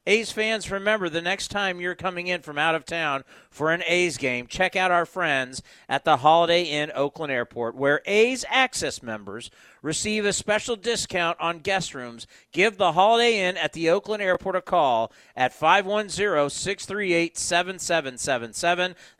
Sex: male